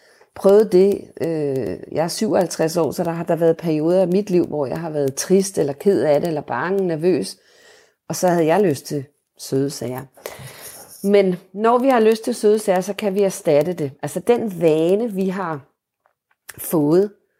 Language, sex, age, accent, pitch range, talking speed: Danish, female, 40-59, native, 160-200 Hz, 185 wpm